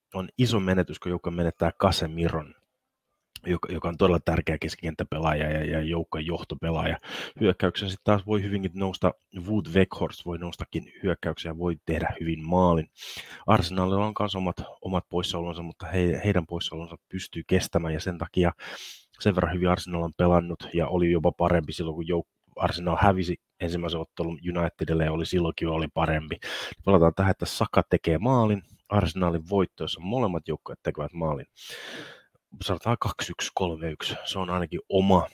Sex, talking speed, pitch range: male, 145 wpm, 85-100 Hz